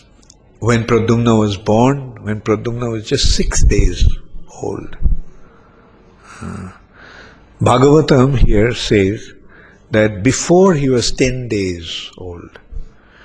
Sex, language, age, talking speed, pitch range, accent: male, English, 50-69, 100 wpm, 100-130 Hz, Indian